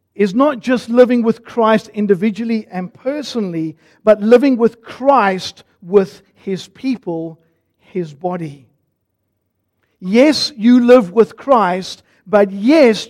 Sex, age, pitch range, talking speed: male, 50-69, 185-250 Hz, 115 wpm